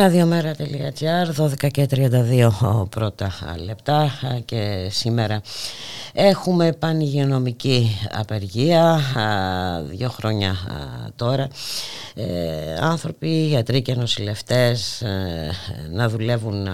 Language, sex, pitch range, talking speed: Greek, female, 90-135 Hz, 70 wpm